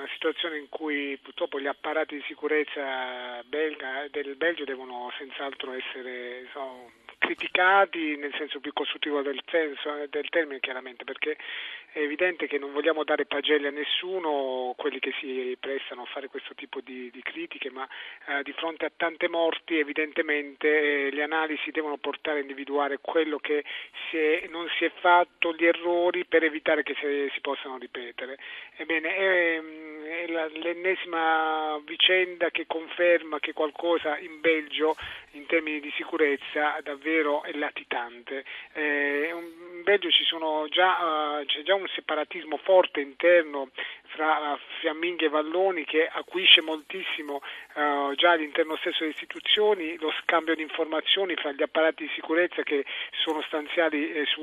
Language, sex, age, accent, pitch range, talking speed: Italian, male, 40-59, native, 140-165 Hz, 145 wpm